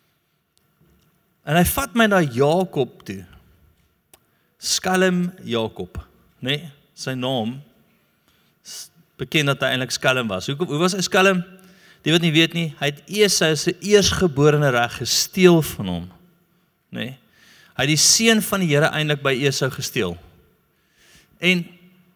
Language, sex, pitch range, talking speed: English, male, 135-190 Hz, 135 wpm